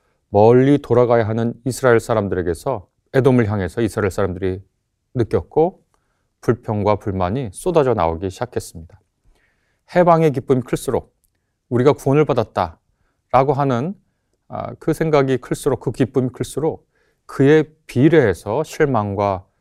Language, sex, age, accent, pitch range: Korean, male, 30-49, native, 100-135 Hz